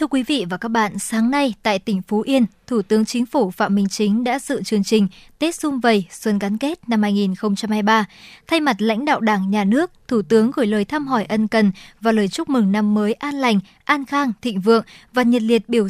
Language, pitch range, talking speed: Vietnamese, 210-255 Hz, 235 wpm